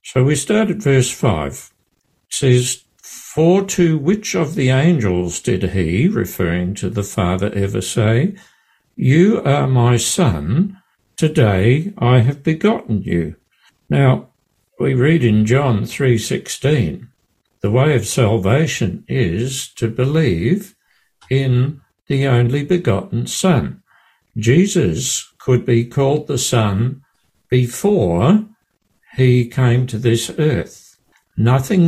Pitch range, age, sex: 115-160 Hz, 60-79, male